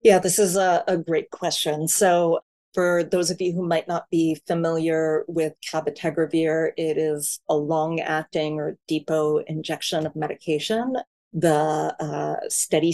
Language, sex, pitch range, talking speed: English, female, 155-180 Hz, 145 wpm